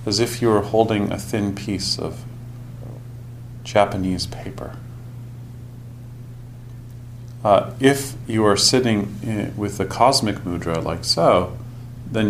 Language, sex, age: English, male, 40-59